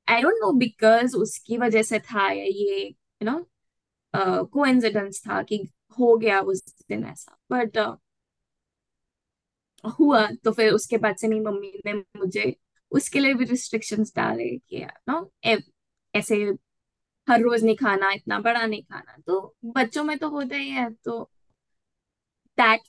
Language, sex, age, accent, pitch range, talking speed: Hindi, female, 20-39, native, 200-235 Hz, 145 wpm